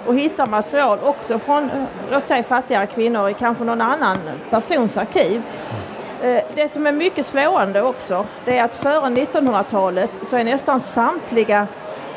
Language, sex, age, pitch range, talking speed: Swedish, female, 40-59, 215-270 Hz, 135 wpm